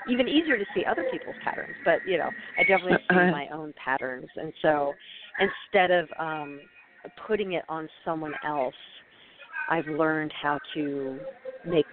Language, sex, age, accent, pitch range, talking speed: English, female, 40-59, American, 150-210 Hz, 155 wpm